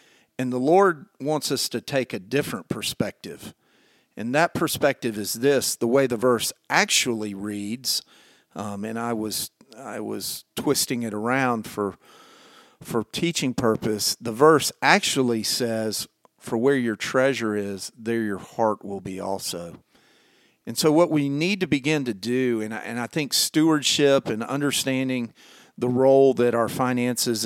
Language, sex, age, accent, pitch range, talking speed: English, male, 50-69, American, 115-145 Hz, 155 wpm